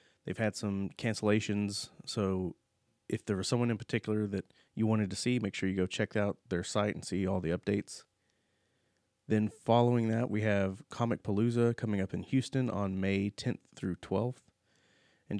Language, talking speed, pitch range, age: English, 180 wpm, 100-115 Hz, 30-49